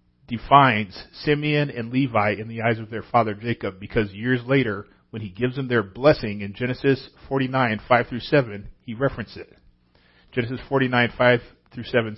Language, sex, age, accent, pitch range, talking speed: English, male, 40-59, American, 105-135 Hz, 150 wpm